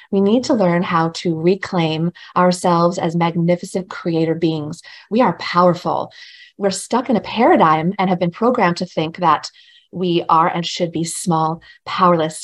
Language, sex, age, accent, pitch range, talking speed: English, female, 30-49, American, 170-205 Hz, 165 wpm